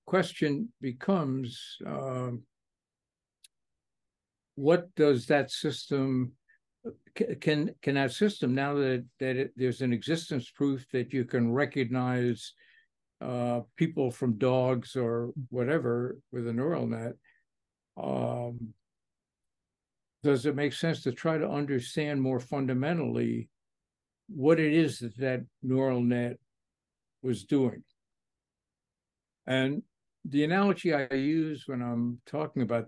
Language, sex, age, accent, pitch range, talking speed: Hebrew, male, 60-79, American, 120-150 Hz, 115 wpm